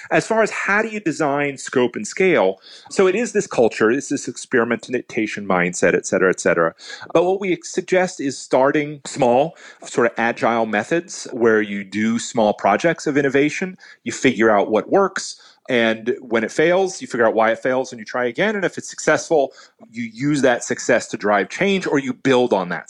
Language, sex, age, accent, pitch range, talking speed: English, male, 30-49, American, 110-165 Hz, 200 wpm